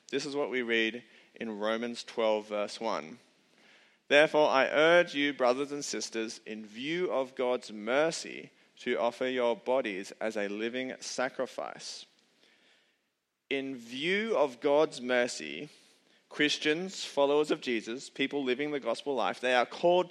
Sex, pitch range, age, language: male, 120-150 Hz, 30-49, Chinese